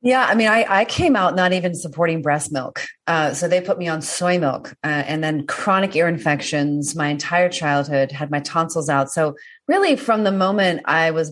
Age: 30-49